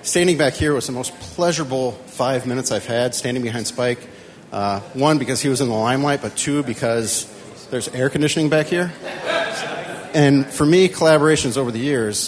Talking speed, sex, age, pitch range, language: 180 wpm, male, 40-59, 105-130 Hz, English